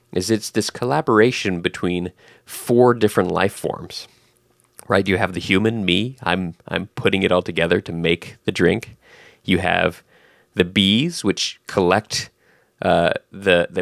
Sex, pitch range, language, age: male, 90-115 Hz, English, 30-49